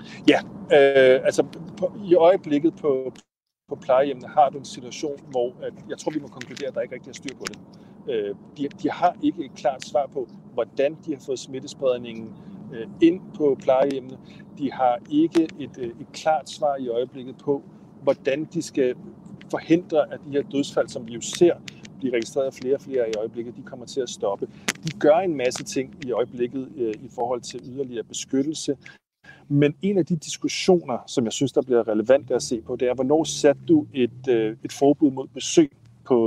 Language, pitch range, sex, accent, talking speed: Danish, 125-180 Hz, male, native, 200 wpm